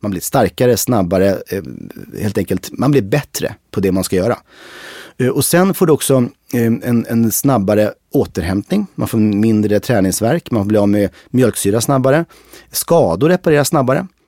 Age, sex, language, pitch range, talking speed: 30-49, male, Swedish, 100-135 Hz, 155 wpm